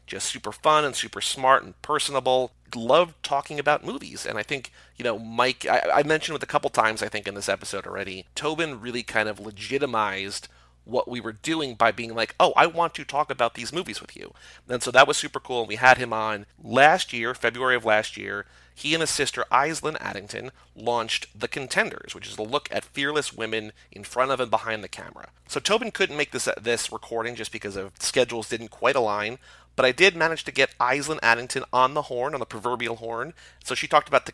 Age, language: 30-49, English